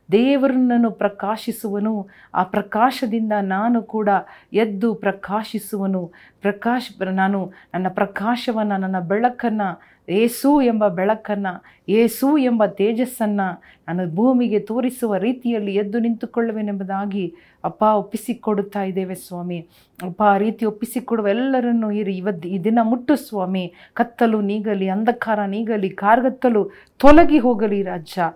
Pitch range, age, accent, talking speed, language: 180-225 Hz, 40-59, native, 100 wpm, Kannada